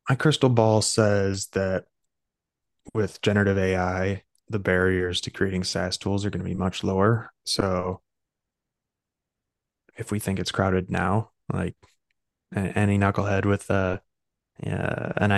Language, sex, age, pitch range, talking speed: English, male, 20-39, 90-105 Hz, 135 wpm